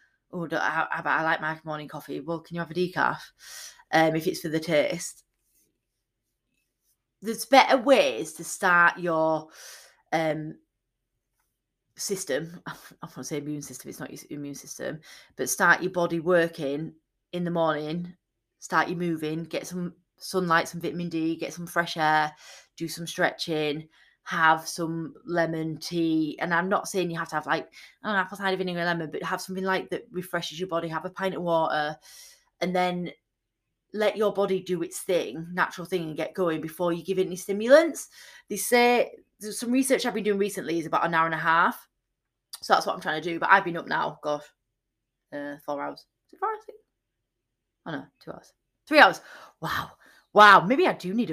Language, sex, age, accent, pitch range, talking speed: English, female, 20-39, British, 160-190 Hz, 180 wpm